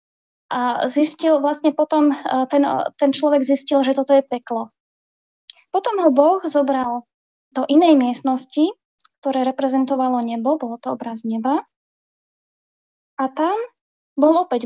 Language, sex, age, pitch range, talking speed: Slovak, female, 20-39, 260-305 Hz, 125 wpm